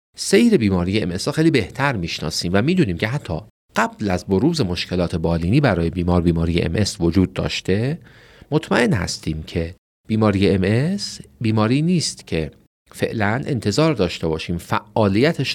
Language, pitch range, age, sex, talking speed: Persian, 85-130 Hz, 40-59, male, 135 wpm